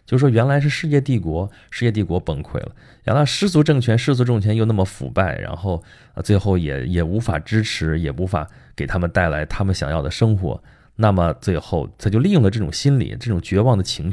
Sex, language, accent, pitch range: male, Chinese, native, 90-120 Hz